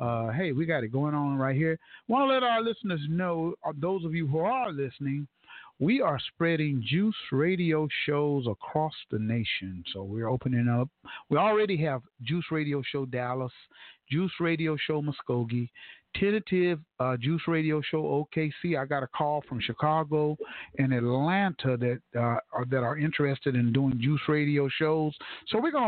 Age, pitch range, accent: 50-69, 135-180 Hz, American